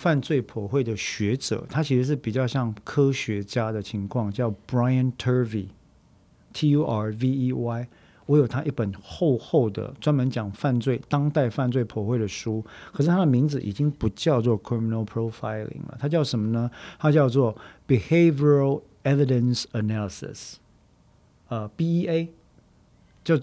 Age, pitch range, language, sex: 50-69, 110-145 Hz, Chinese, male